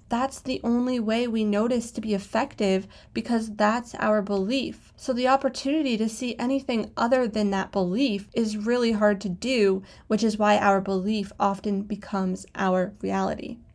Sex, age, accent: female, 20-39, American